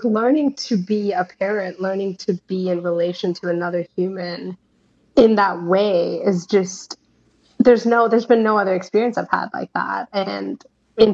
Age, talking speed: 20-39, 165 wpm